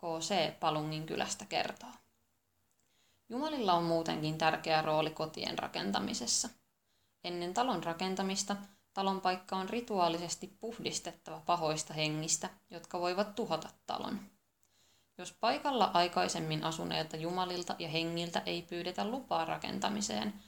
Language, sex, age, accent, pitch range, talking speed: Finnish, female, 20-39, native, 160-200 Hz, 105 wpm